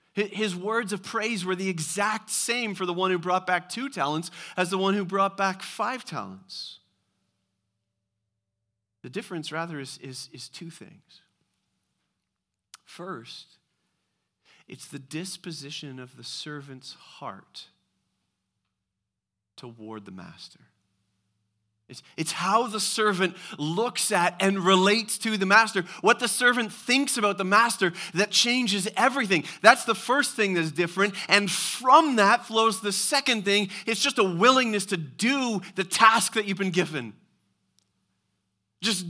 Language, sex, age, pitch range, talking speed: English, male, 40-59, 125-215 Hz, 140 wpm